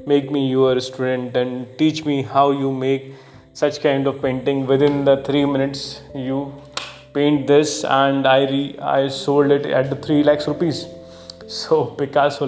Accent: native